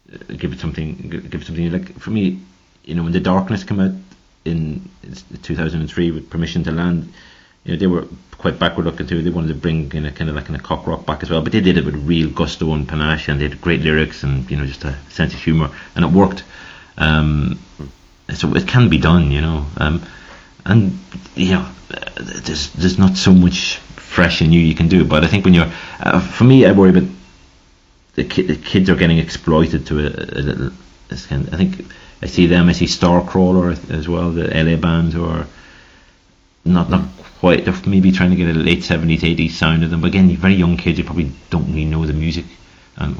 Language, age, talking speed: English, 30-49, 225 wpm